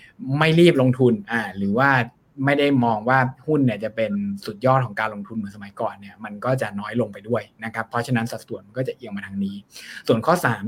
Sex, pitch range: male, 115-135 Hz